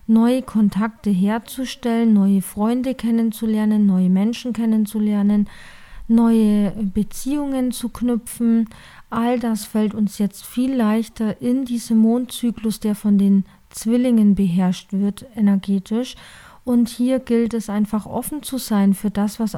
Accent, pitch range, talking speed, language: German, 205-235 Hz, 125 wpm, German